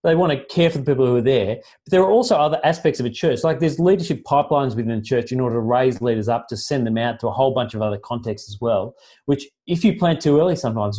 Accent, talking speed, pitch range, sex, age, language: Australian, 285 wpm, 120-160 Hz, male, 30-49, English